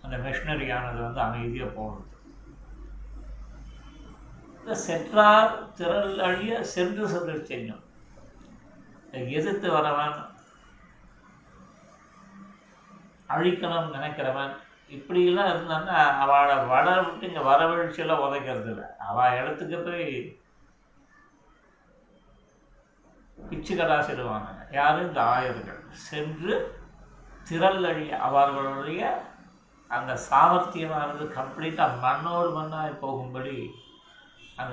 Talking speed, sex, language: 75 wpm, male, Tamil